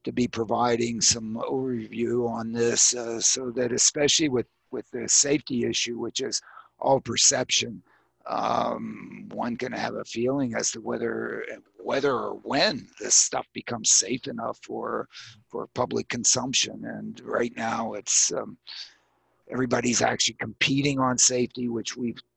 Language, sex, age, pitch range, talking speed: English, male, 50-69, 120-140 Hz, 140 wpm